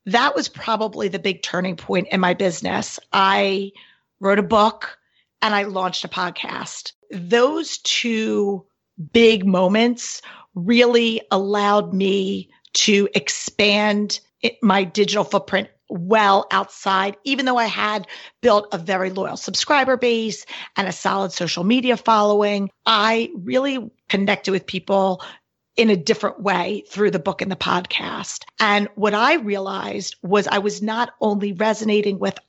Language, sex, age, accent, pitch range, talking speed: English, female, 40-59, American, 195-220 Hz, 140 wpm